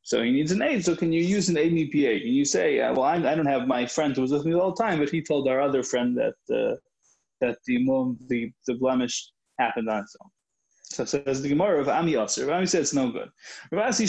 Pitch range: 125-170 Hz